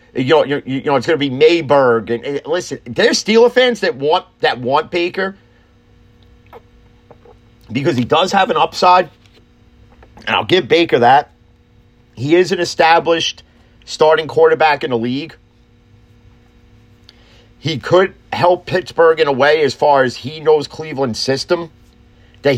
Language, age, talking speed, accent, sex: English, 40-59, 145 wpm, American, male